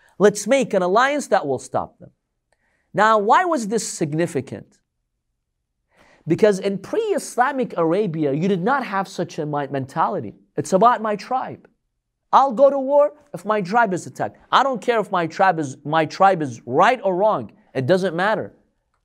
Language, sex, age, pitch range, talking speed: English, male, 40-59, 155-240 Hz, 165 wpm